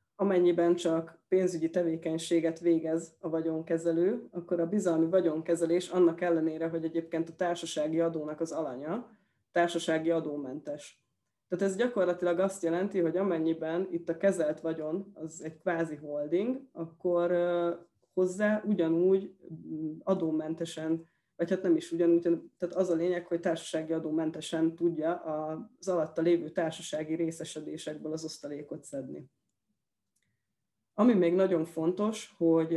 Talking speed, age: 125 wpm, 20-39